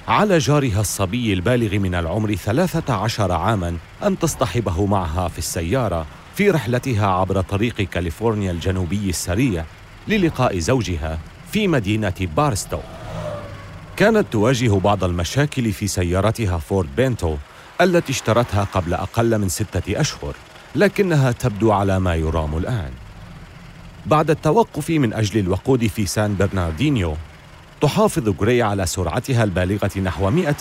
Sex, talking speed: male, 120 wpm